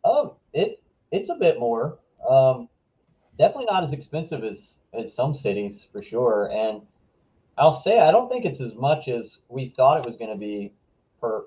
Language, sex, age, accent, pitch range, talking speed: English, male, 30-49, American, 100-145 Hz, 185 wpm